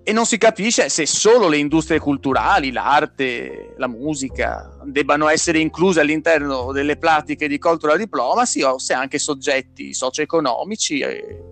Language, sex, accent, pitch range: Italian, male, native, 130-170 Hz